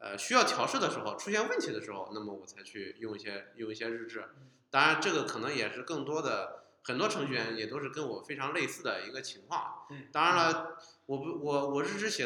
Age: 20-39